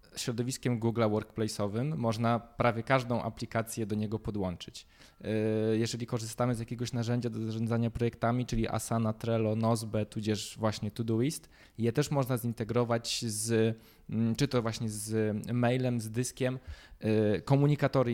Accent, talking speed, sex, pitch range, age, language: native, 125 wpm, male, 110-130 Hz, 20-39, Polish